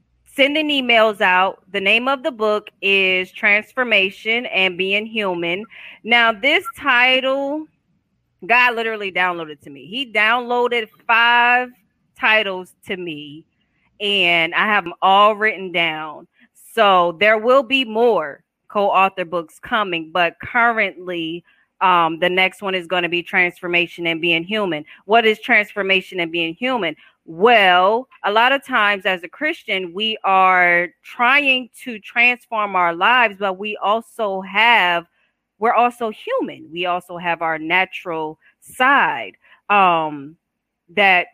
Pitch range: 180-225 Hz